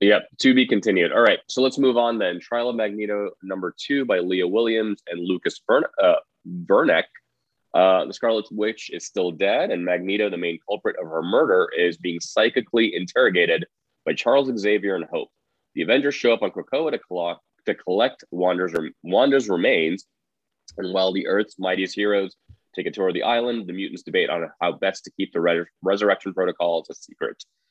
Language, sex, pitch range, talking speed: English, male, 90-120 Hz, 190 wpm